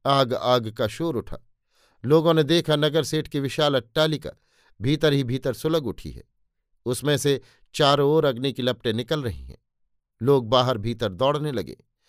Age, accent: 50-69, native